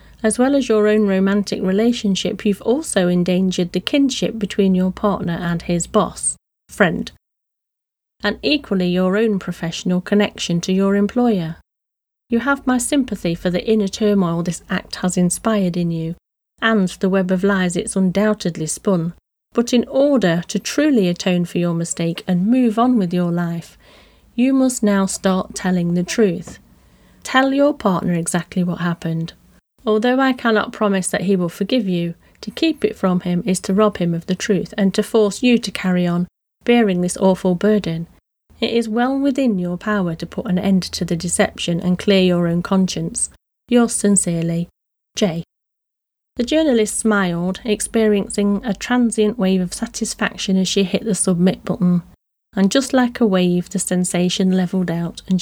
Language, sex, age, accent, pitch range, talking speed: English, female, 30-49, British, 180-220 Hz, 170 wpm